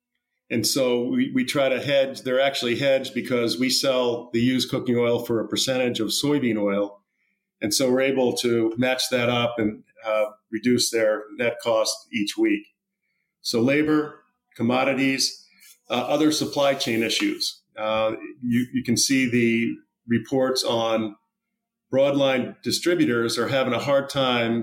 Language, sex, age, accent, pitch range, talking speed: English, male, 40-59, American, 115-140 Hz, 150 wpm